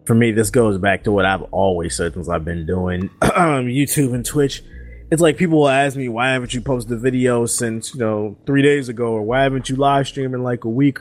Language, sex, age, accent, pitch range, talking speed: English, male, 20-39, American, 105-135 Hz, 250 wpm